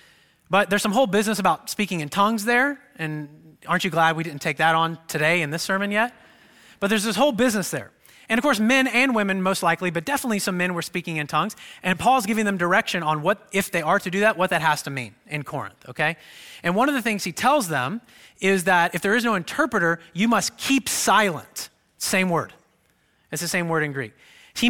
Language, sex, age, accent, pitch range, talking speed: English, male, 30-49, American, 150-210 Hz, 230 wpm